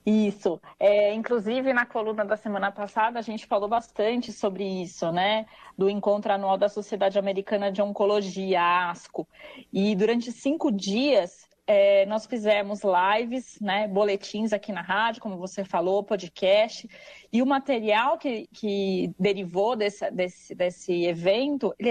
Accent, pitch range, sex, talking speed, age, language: Brazilian, 205-245 Hz, female, 145 wpm, 30-49, Portuguese